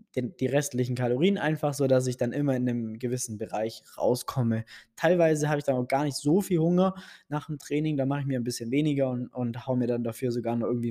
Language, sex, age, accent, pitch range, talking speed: German, male, 20-39, German, 120-140 Hz, 230 wpm